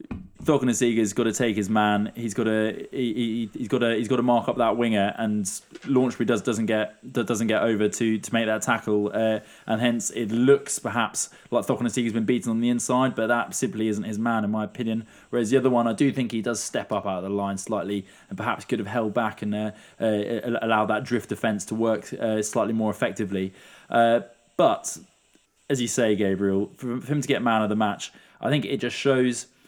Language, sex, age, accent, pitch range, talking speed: English, male, 20-39, British, 110-130 Hz, 230 wpm